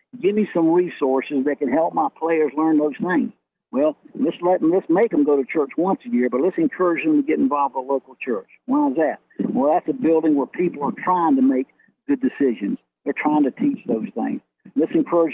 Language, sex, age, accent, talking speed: English, male, 60-79, American, 225 wpm